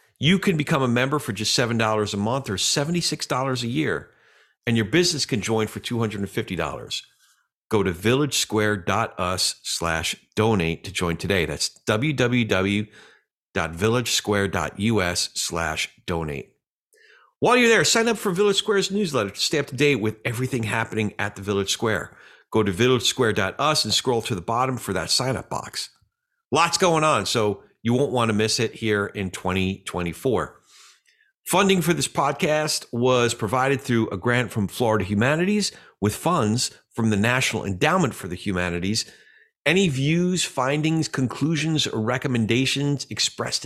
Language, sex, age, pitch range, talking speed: English, male, 50-69, 100-140 Hz, 155 wpm